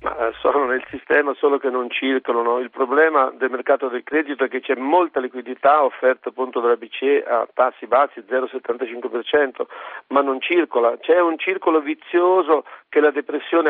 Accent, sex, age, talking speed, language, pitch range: native, male, 50-69, 160 wpm, Italian, 125-160 Hz